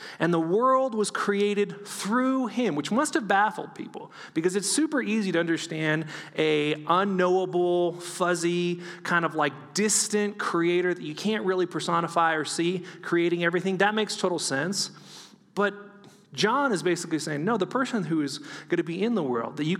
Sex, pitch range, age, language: male, 165-215 Hz, 30-49, English